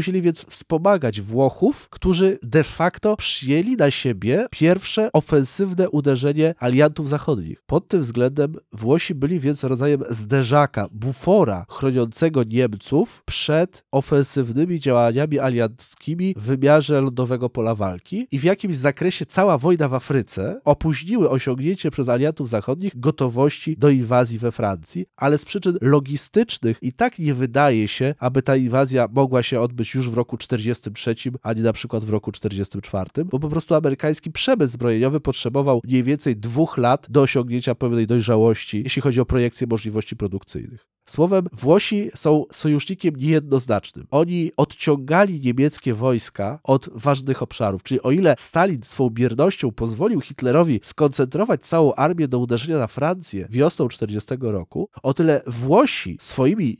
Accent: native